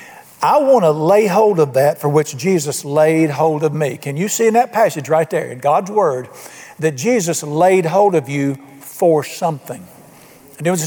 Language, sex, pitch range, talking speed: English, male, 150-205 Hz, 190 wpm